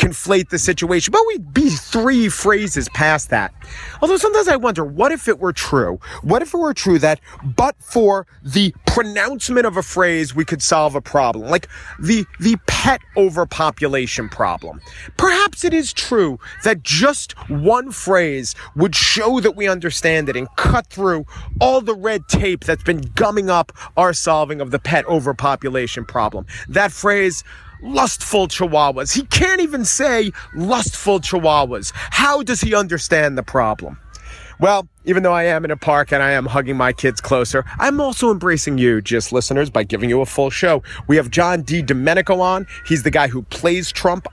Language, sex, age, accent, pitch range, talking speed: English, male, 40-59, American, 140-205 Hz, 175 wpm